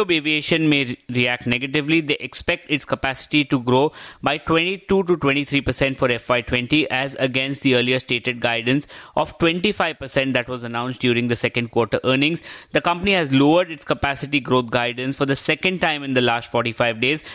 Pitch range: 130-155 Hz